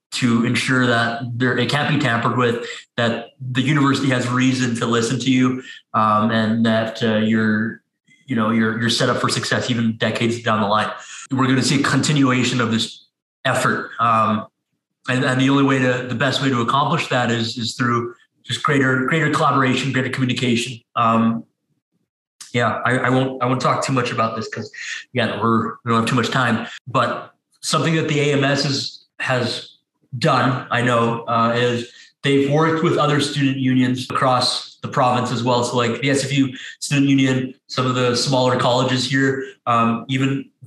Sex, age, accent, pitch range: male, 20-39, American, 120-135 Hz